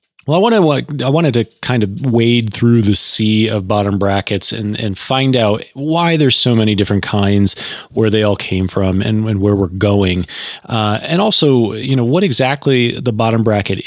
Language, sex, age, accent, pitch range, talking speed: English, male, 30-49, American, 100-125 Hz, 195 wpm